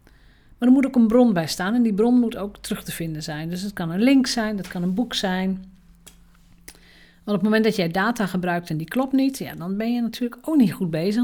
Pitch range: 170-220 Hz